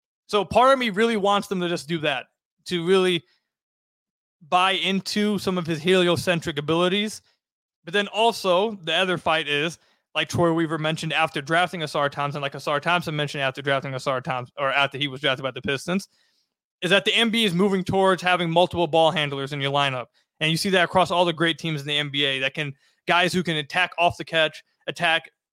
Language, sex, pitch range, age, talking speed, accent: English, male, 155-190 Hz, 20-39, 205 wpm, American